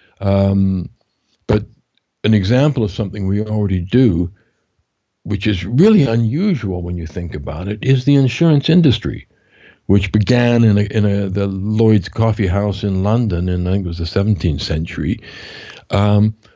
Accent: American